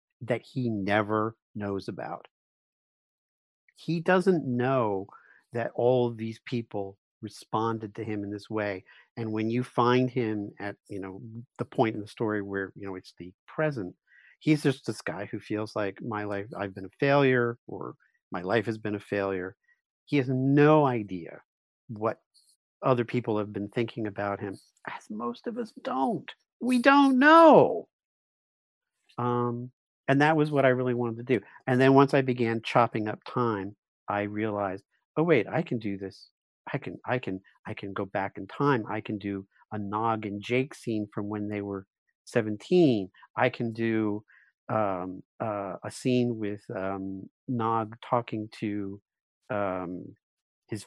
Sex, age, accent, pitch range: male, 50-69, American, 100-125 Hz